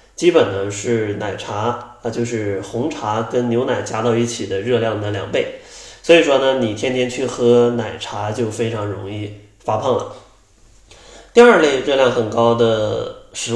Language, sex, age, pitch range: Chinese, male, 20-39, 110-130 Hz